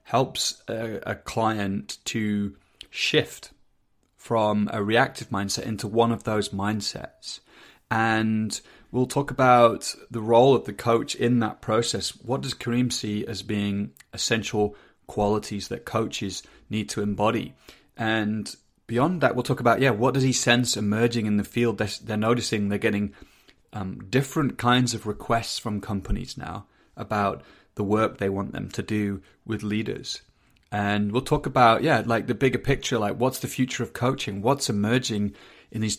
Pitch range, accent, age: 105-120 Hz, British, 30-49